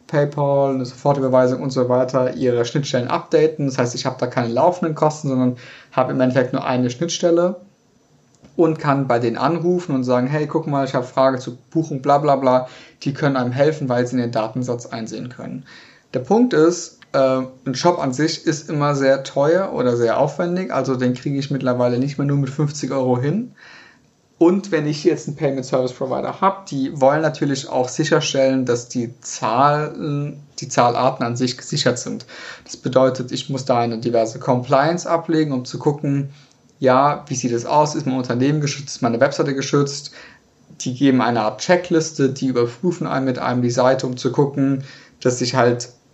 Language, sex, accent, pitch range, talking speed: German, male, German, 125-150 Hz, 190 wpm